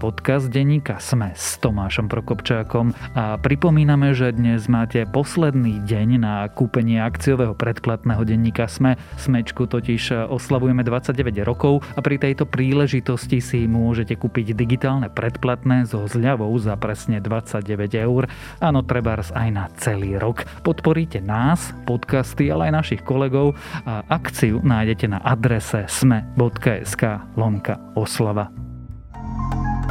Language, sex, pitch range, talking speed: Slovak, male, 115-150 Hz, 115 wpm